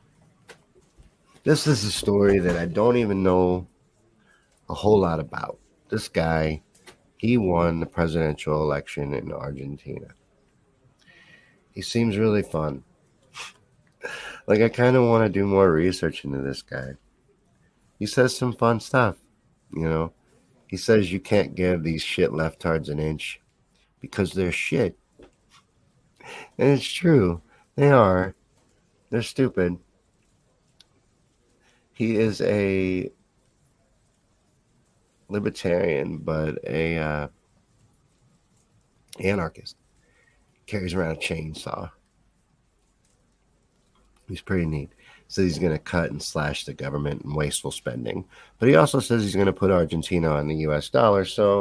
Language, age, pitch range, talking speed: English, 50-69, 80-110 Hz, 125 wpm